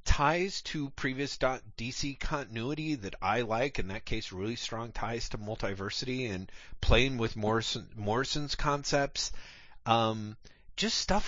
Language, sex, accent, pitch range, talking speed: English, male, American, 95-125 Hz, 135 wpm